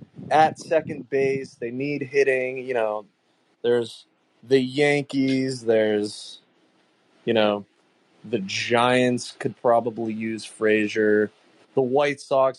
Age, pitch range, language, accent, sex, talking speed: 20-39, 115-155 Hz, English, American, male, 110 wpm